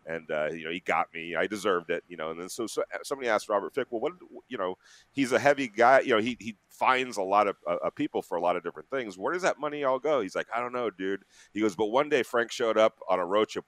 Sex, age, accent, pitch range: male, 40-59, American, 90-115 Hz